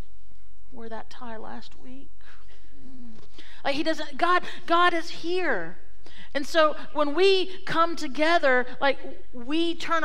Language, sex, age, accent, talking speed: English, female, 40-59, American, 125 wpm